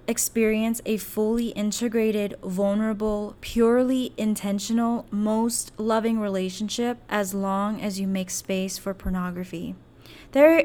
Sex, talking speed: female, 105 wpm